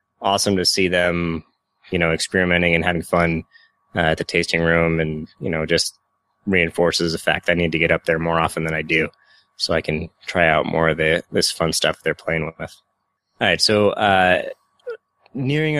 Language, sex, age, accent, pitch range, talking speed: English, male, 20-39, American, 85-105 Hz, 200 wpm